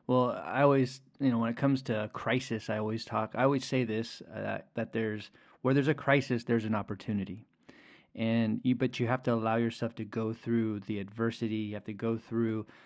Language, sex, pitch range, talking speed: English, male, 110-130 Hz, 215 wpm